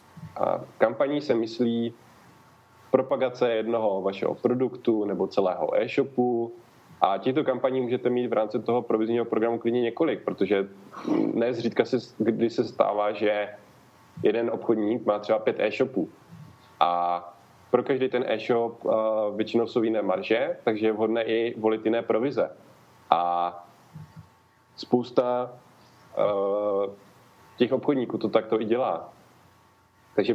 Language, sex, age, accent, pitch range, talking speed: Czech, male, 20-39, native, 100-120 Hz, 125 wpm